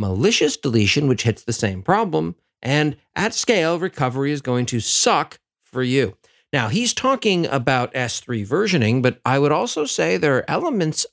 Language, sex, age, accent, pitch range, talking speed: English, male, 50-69, American, 110-170 Hz, 165 wpm